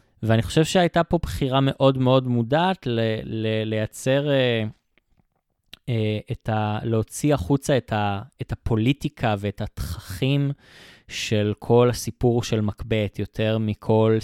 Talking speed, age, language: 120 wpm, 20-39, Hebrew